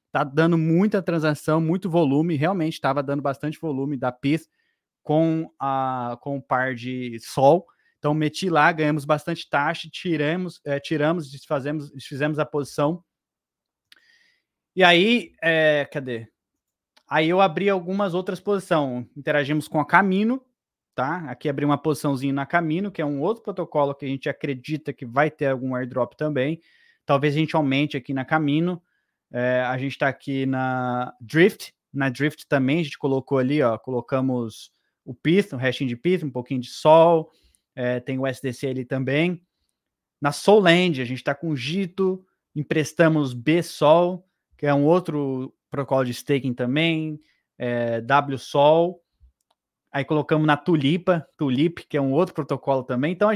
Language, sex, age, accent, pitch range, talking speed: Portuguese, male, 20-39, Brazilian, 135-165 Hz, 160 wpm